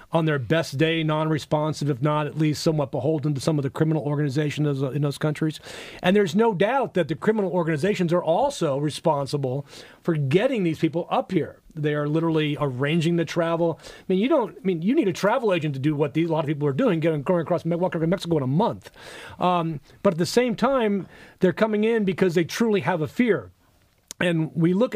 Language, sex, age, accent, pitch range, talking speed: English, male, 40-59, American, 150-185 Hz, 215 wpm